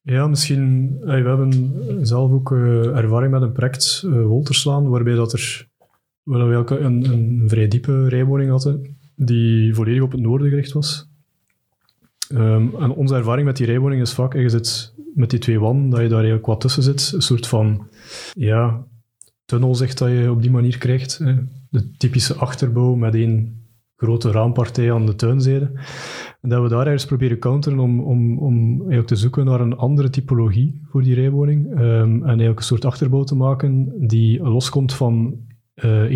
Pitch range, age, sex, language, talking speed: 115-135 Hz, 30-49, male, Dutch, 180 wpm